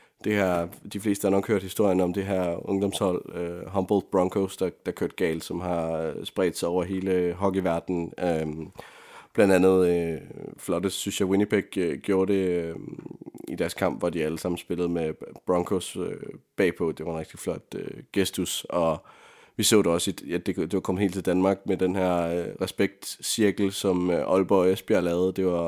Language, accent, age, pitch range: Danish, native, 30-49, 85-95 Hz